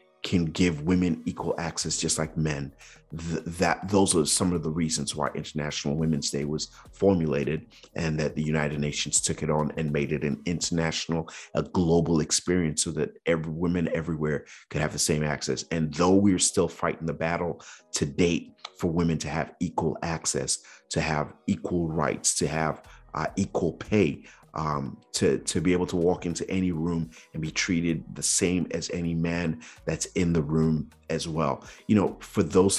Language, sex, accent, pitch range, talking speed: English, male, American, 75-90 Hz, 185 wpm